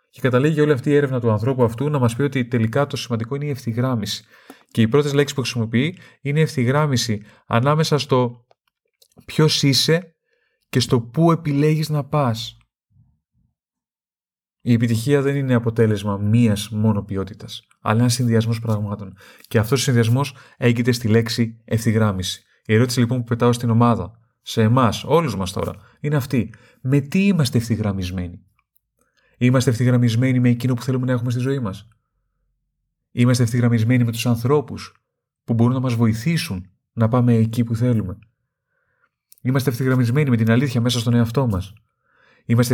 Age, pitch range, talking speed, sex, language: 30-49, 110-130 Hz, 155 wpm, male, Greek